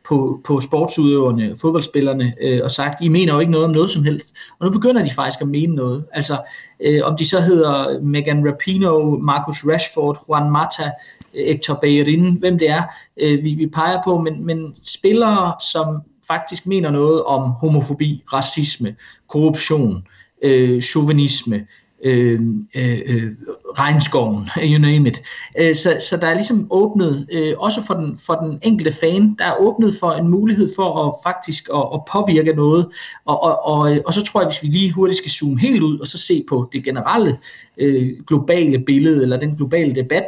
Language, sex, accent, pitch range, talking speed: English, male, Danish, 135-165 Hz, 175 wpm